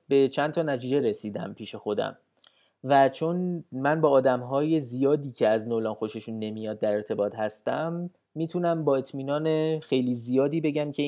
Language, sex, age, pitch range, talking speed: Persian, male, 30-49, 125-170 Hz, 150 wpm